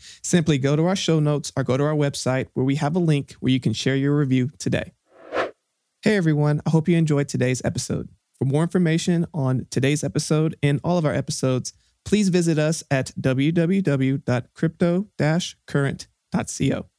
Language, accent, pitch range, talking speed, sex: English, American, 135-170 Hz, 165 wpm, male